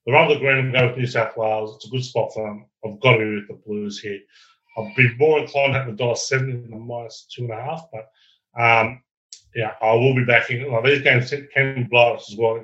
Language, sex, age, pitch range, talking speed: English, male, 30-49, 110-135 Hz, 255 wpm